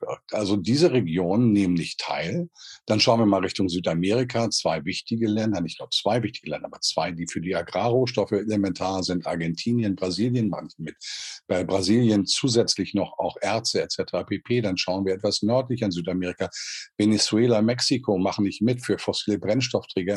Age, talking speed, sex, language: 50-69, 165 wpm, male, German